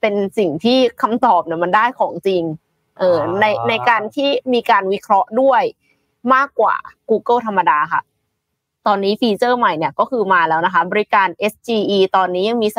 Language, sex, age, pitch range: Thai, female, 20-39, 180-240 Hz